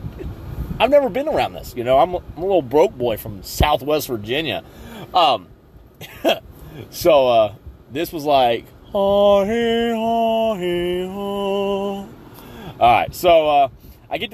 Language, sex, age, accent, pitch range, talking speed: English, male, 30-49, American, 125-195 Hz, 120 wpm